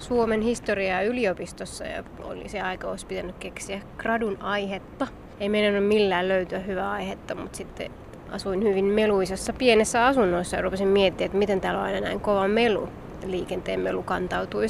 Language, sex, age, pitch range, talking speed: Finnish, female, 20-39, 190-225 Hz, 165 wpm